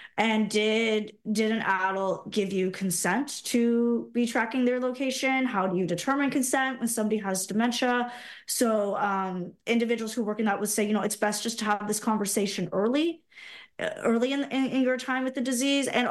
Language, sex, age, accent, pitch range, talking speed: English, female, 20-39, American, 205-245 Hz, 190 wpm